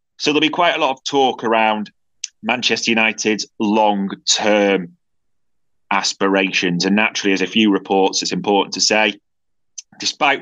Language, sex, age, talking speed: English, male, 30-49, 140 wpm